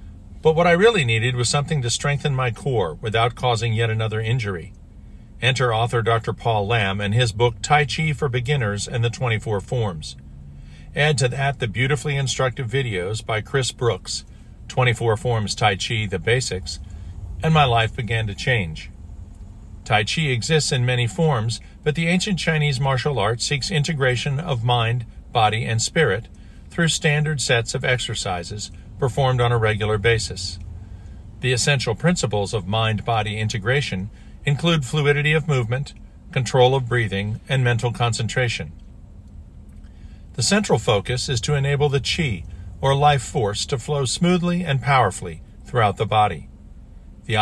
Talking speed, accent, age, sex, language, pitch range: 150 wpm, American, 50-69, male, English, 100-135 Hz